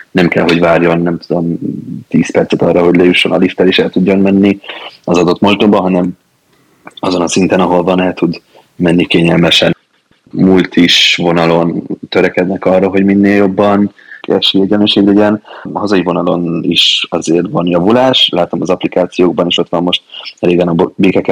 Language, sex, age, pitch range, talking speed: Hungarian, male, 20-39, 85-95 Hz, 160 wpm